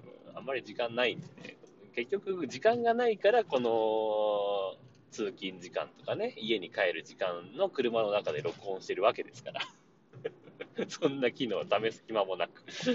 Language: Japanese